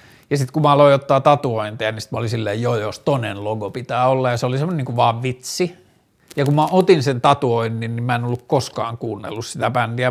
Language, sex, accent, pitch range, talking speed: Finnish, male, native, 120-145 Hz, 225 wpm